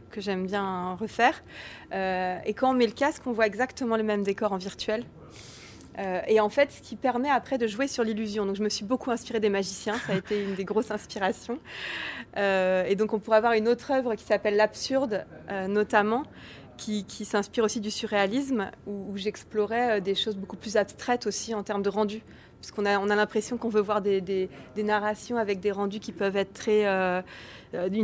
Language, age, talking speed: French, 30-49, 215 wpm